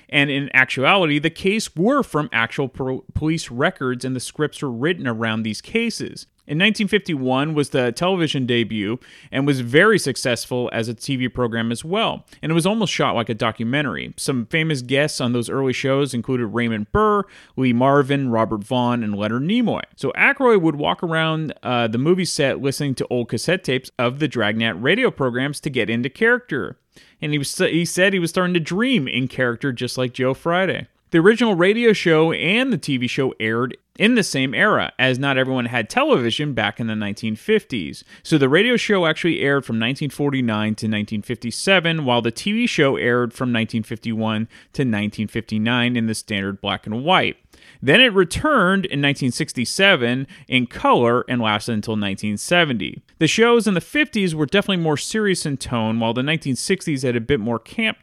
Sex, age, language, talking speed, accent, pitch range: male, 30-49, English, 180 wpm, American, 120-165 Hz